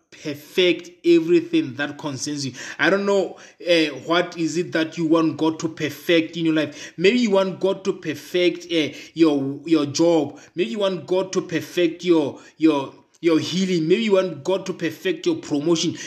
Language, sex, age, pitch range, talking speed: English, male, 20-39, 160-180 Hz, 185 wpm